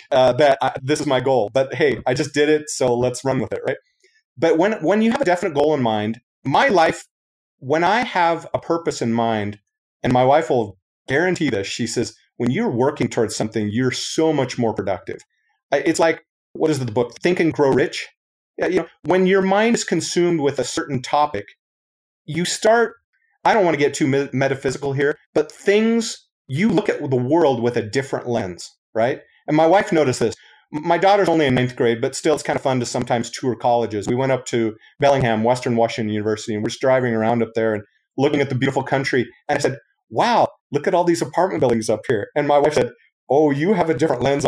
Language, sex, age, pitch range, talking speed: English, male, 30-49, 120-165 Hz, 220 wpm